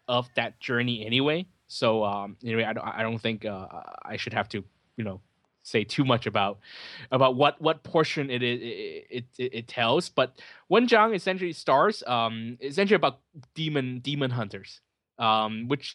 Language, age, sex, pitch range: English, 20-39, male, 110-135 Hz